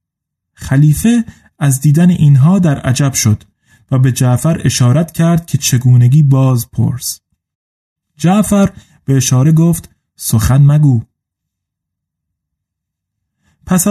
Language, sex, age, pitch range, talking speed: Persian, male, 30-49, 135-165 Hz, 100 wpm